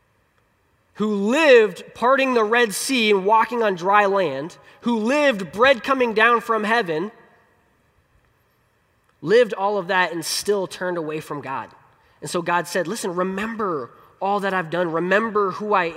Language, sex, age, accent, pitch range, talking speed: English, male, 20-39, American, 140-195 Hz, 155 wpm